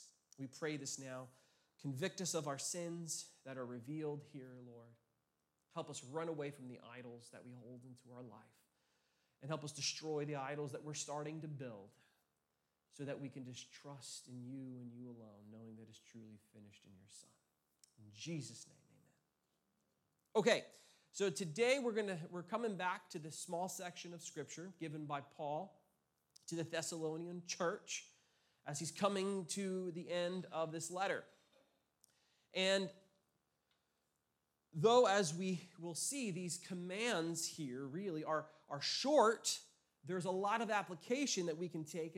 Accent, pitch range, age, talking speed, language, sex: American, 130-180 Hz, 30-49, 160 wpm, English, male